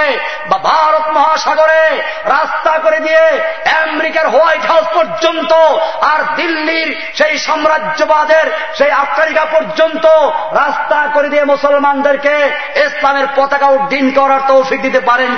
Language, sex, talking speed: Bengali, male, 110 wpm